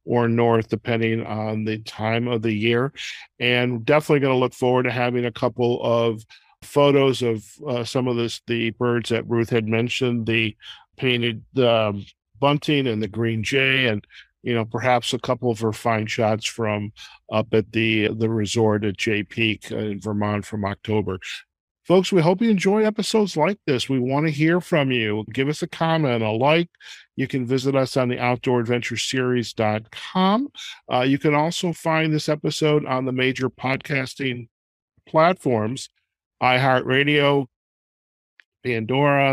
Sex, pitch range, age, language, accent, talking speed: male, 115-140 Hz, 50-69, English, American, 155 wpm